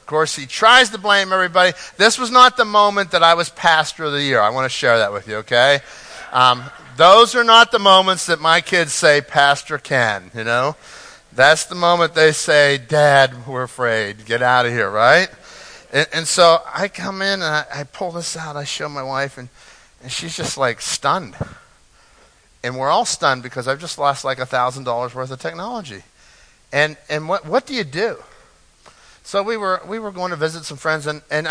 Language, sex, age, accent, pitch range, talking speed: English, male, 50-69, American, 130-170 Hz, 205 wpm